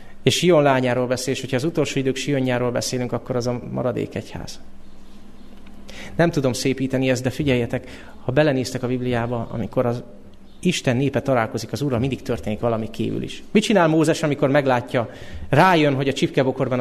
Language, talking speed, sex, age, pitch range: Hungarian, 170 wpm, male, 30-49, 120-150 Hz